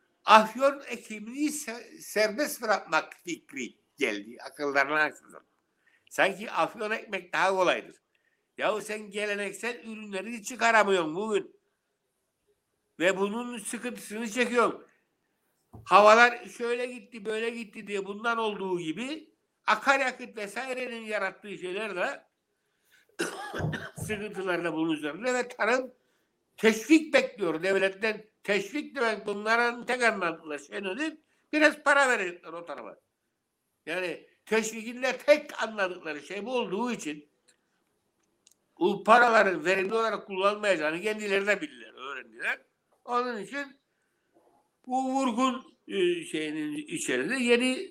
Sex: male